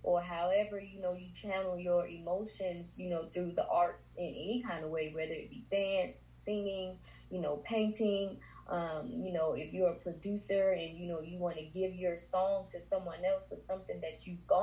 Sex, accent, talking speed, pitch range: female, American, 200 wpm, 170-195 Hz